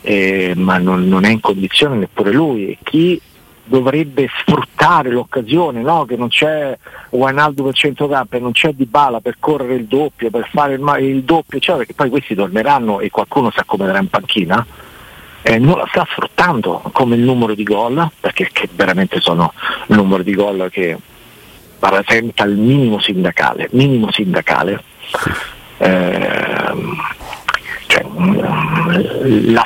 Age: 50-69